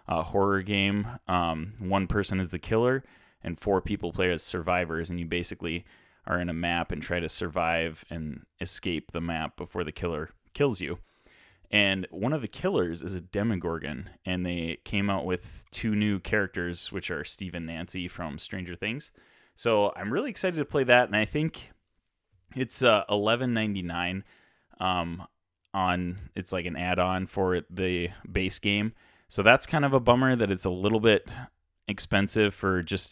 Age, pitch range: 30-49, 90-105 Hz